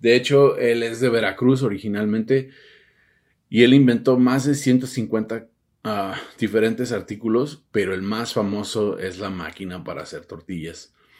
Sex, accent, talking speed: male, Mexican, 135 wpm